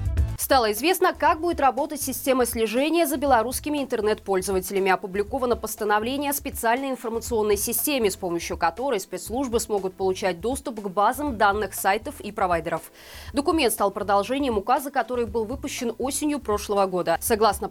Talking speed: 135 wpm